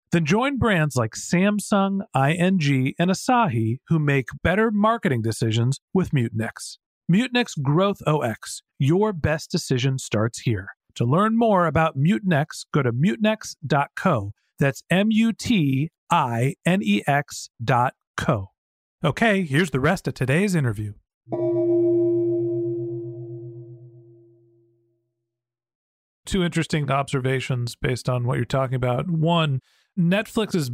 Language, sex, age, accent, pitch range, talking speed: English, male, 40-59, American, 130-175 Hz, 105 wpm